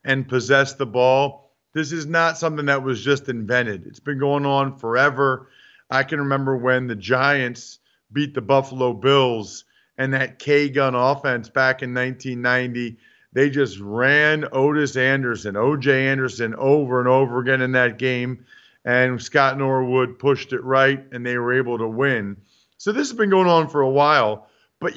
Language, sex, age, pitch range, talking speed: English, male, 40-59, 125-150 Hz, 170 wpm